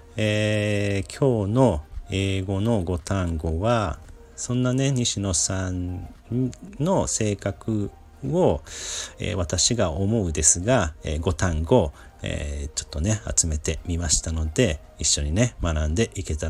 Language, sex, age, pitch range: Japanese, male, 40-59, 80-105 Hz